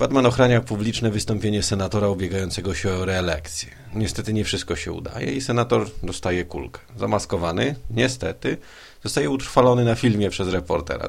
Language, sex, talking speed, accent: Polish, male, 140 wpm, native